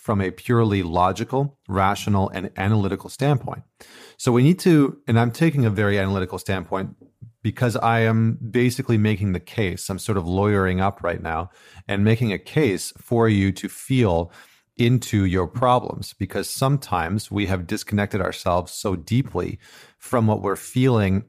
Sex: male